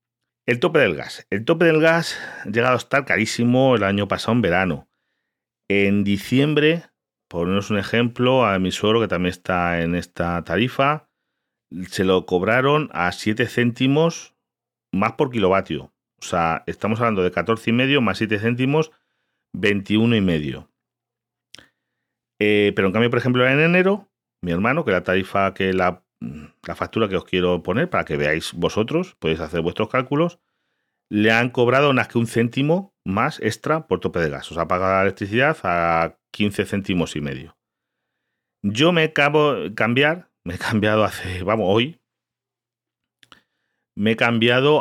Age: 40-59